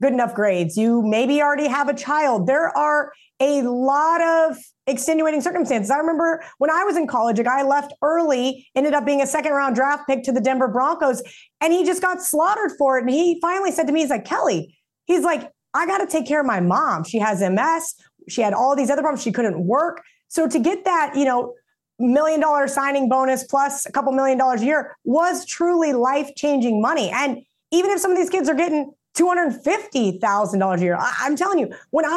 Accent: American